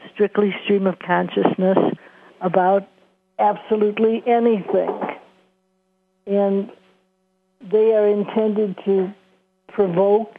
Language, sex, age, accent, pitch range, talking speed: English, female, 60-79, American, 185-205 Hz, 75 wpm